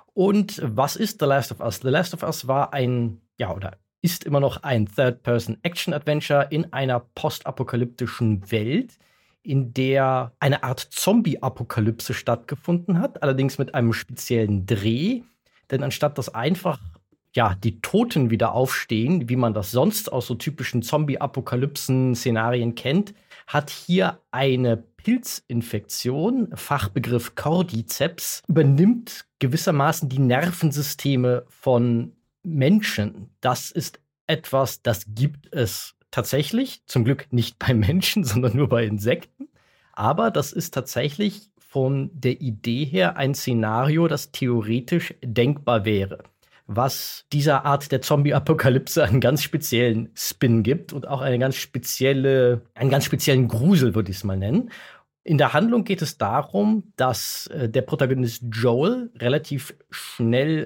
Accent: German